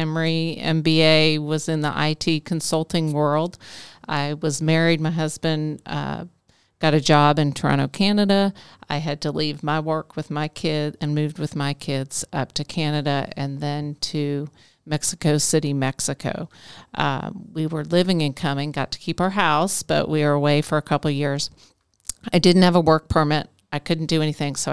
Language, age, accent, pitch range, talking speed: English, 50-69, American, 145-165 Hz, 175 wpm